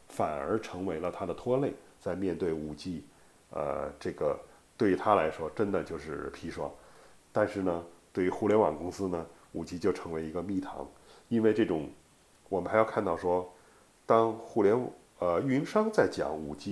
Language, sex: Chinese, male